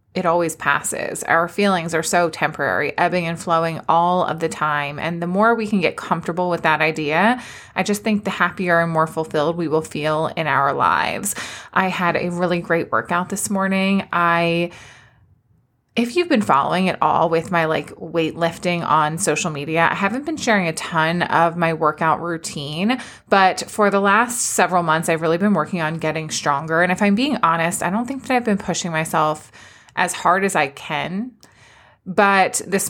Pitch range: 160-195 Hz